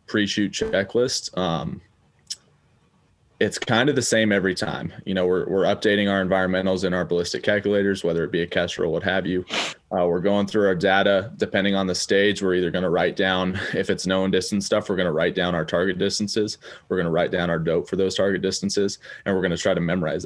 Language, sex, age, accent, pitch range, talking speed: English, male, 20-39, American, 90-105 Hz, 230 wpm